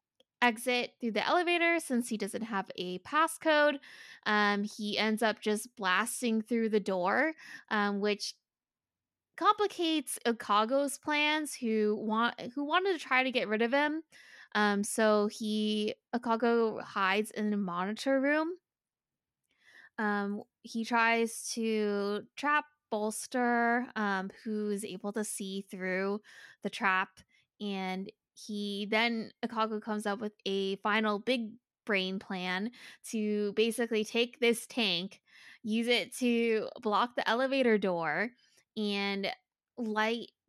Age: 10-29